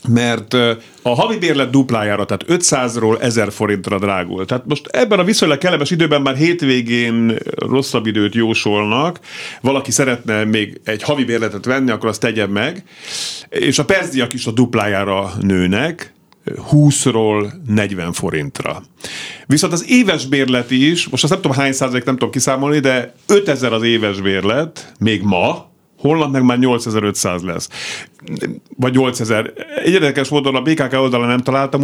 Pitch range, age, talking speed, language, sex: 110-140 Hz, 50-69, 145 wpm, Hungarian, male